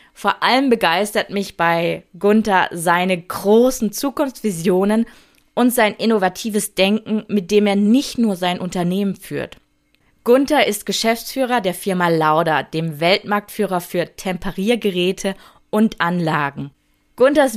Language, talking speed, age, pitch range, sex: German, 115 wpm, 20-39, 180-235 Hz, female